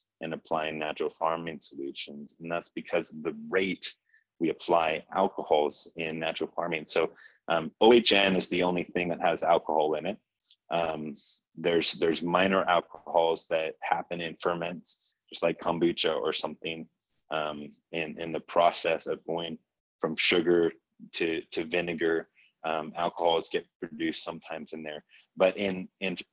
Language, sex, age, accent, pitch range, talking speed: English, male, 30-49, American, 80-95 Hz, 150 wpm